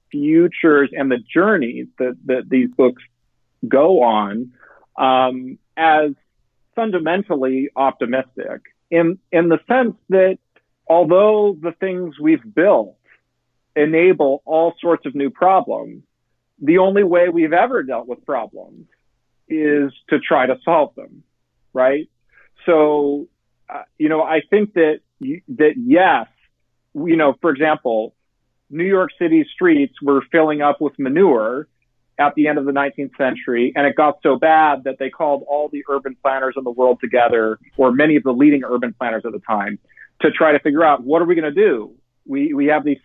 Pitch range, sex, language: 130-170 Hz, male, English